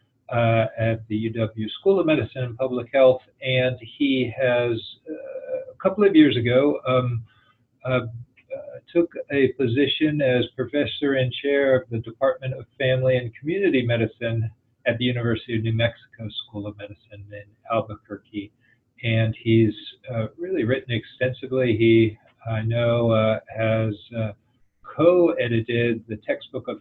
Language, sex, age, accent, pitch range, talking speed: English, male, 50-69, American, 110-130 Hz, 145 wpm